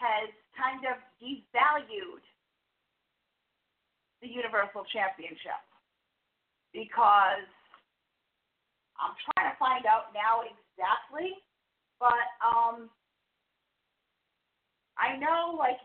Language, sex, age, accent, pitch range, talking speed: English, female, 40-59, American, 215-260 Hz, 75 wpm